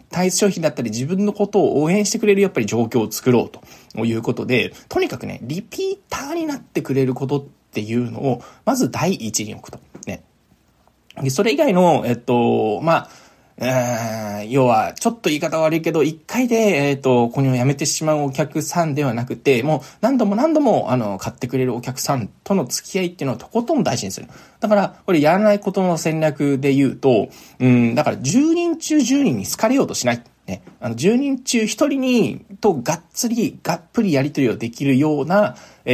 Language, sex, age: Japanese, male, 20-39